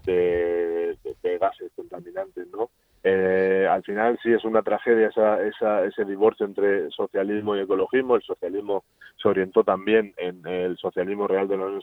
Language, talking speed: Spanish, 165 wpm